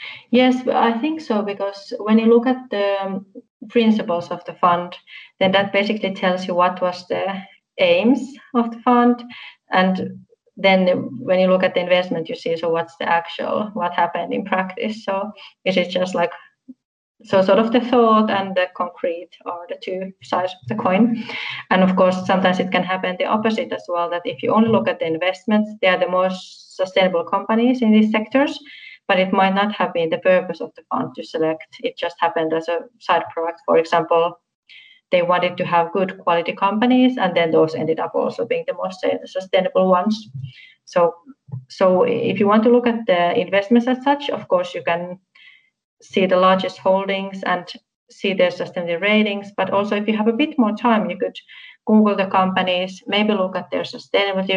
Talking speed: 195 wpm